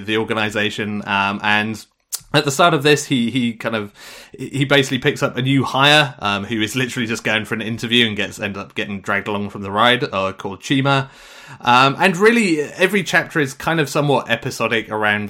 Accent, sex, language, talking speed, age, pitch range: British, male, English, 210 wpm, 30-49, 105-140 Hz